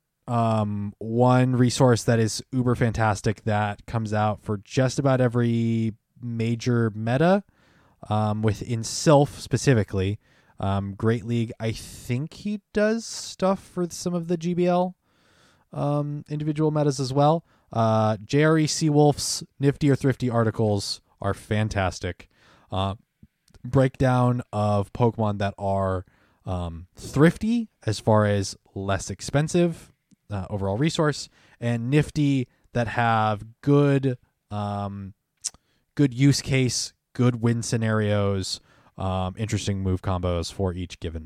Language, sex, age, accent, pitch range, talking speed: English, male, 20-39, American, 105-140 Hz, 120 wpm